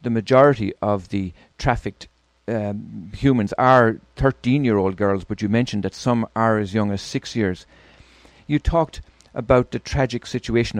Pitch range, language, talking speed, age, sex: 100-120 Hz, English, 150 wpm, 40-59, male